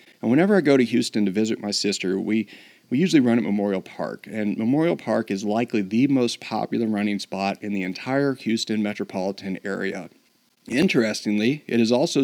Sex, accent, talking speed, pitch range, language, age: male, American, 175 wpm, 105-130 Hz, English, 40-59